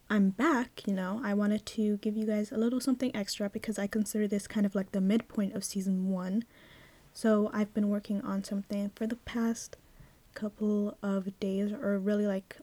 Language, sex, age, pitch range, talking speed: English, female, 10-29, 200-230 Hz, 195 wpm